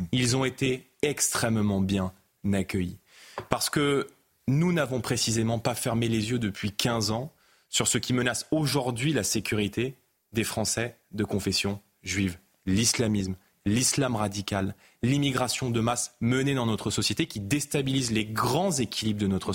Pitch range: 100-130 Hz